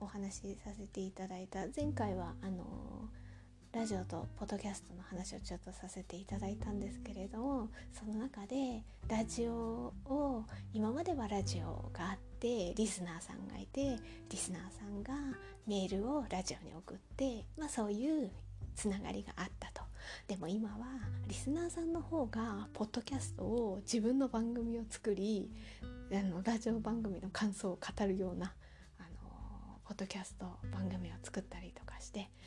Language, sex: Japanese, female